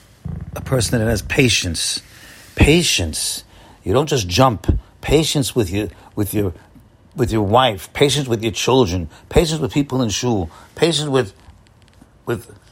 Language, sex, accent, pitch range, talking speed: English, male, American, 105-150 Hz, 140 wpm